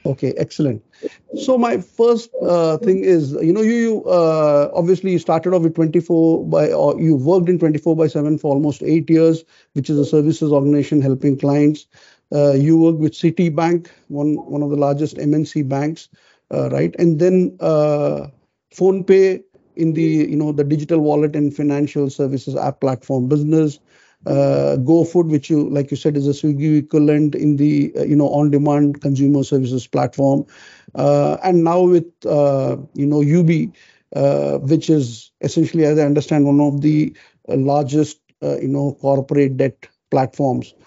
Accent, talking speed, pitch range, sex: Indian, 170 wpm, 140-165 Hz, male